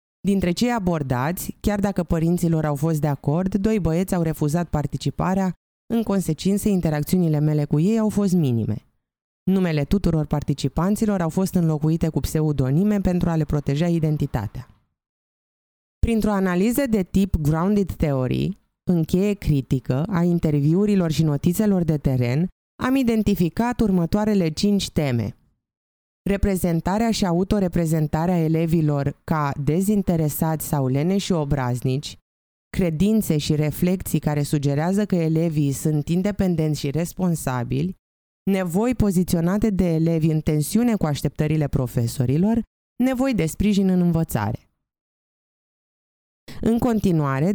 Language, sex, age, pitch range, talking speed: Romanian, female, 20-39, 150-195 Hz, 120 wpm